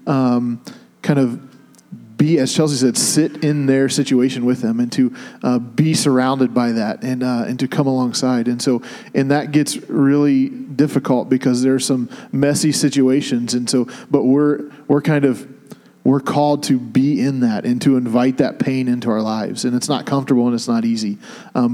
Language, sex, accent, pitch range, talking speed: English, male, American, 125-155 Hz, 190 wpm